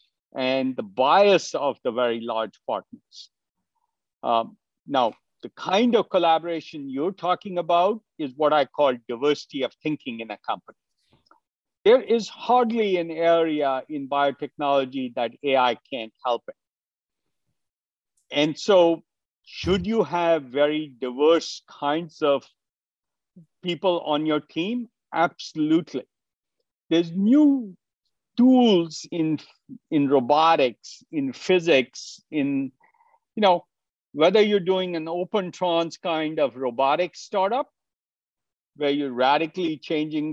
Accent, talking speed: Indian, 115 wpm